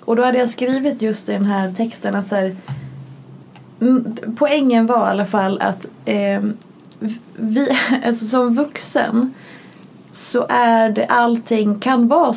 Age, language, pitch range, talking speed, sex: 20-39, Swedish, 205-245 Hz, 145 wpm, female